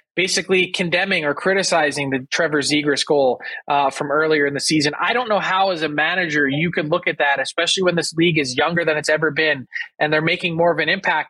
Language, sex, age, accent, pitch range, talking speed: English, male, 20-39, American, 150-185 Hz, 230 wpm